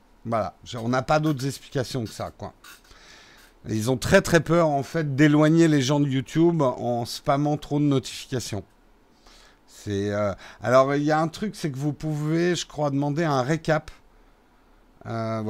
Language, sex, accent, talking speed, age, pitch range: French, male, French, 165 wpm, 50-69, 125-165 Hz